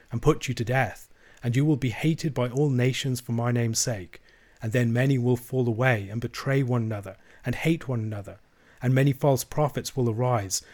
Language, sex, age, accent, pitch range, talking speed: English, male, 30-49, British, 115-140 Hz, 205 wpm